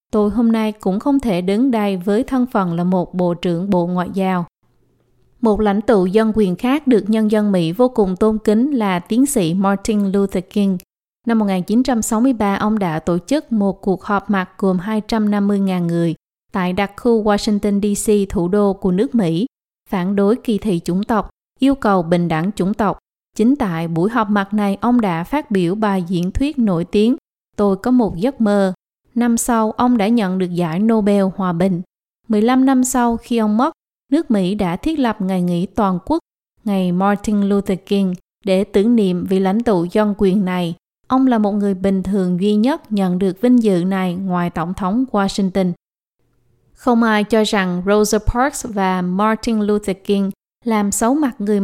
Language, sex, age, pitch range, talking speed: Vietnamese, female, 20-39, 190-225 Hz, 190 wpm